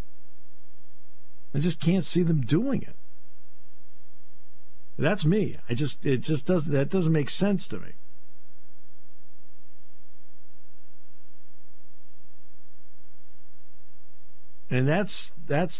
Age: 50-69